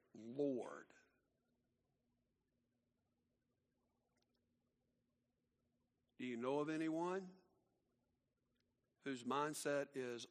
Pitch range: 120-145 Hz